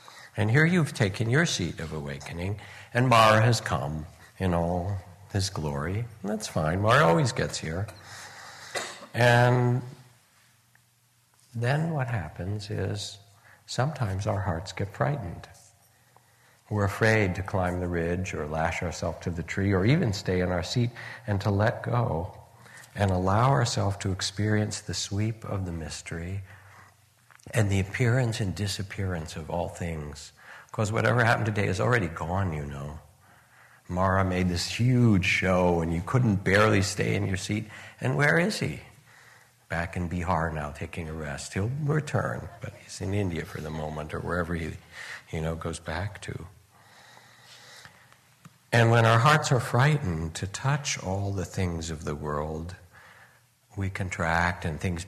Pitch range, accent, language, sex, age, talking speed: 90-115 Hz, American, English, male, 60-79, 155 wpm